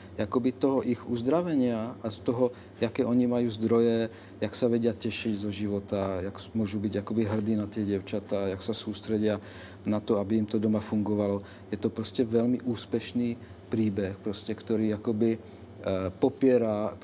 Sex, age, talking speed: male, 40-59, 160 wpm